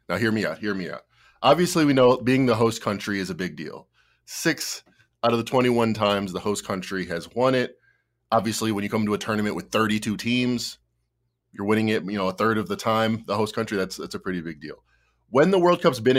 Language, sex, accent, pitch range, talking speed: English, male, American, 85-120 Hz, 235 wpm